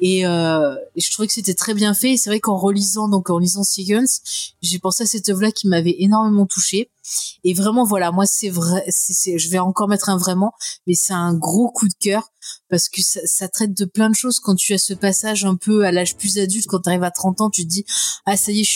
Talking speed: 255 wpm